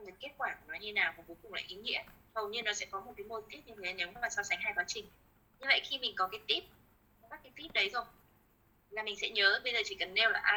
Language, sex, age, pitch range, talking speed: Vietnamese, female, 20-39, 185-290 Hz, 300 wpm